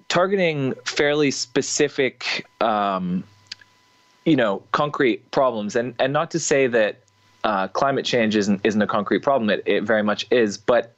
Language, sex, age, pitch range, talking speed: English, male, 20-39, 100-135 Hz, 155 wpm